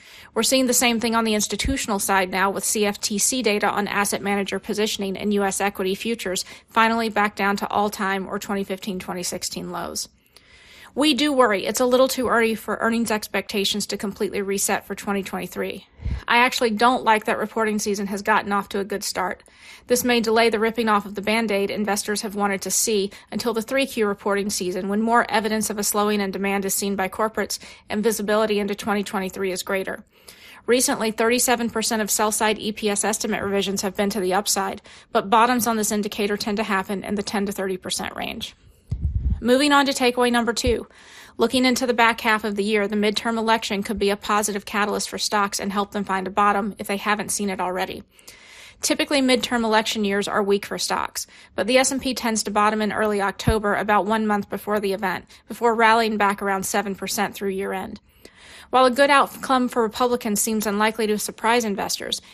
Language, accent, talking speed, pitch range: English, American, 190 wpm, 200-230 Hz